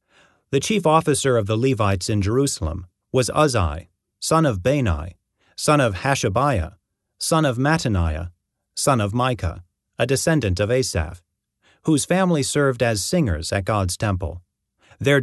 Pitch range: 95-135 Hz